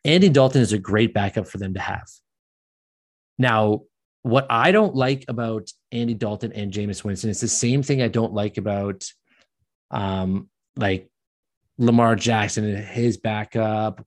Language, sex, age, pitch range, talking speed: English, male, 30-49, 100-125 Hz, 155 wpm